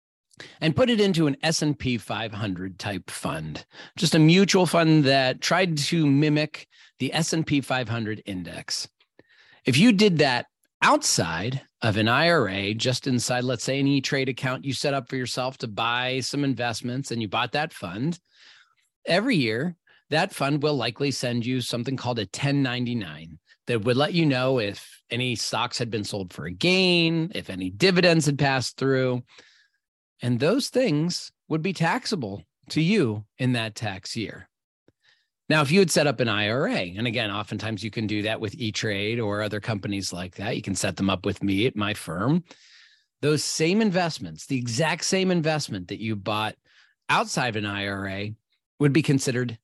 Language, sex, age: English, male, 40-59